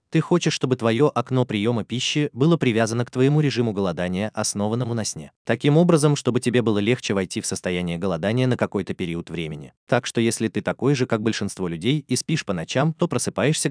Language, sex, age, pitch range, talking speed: Russian, male, 20-39, 100-140 Hz, 195 wpm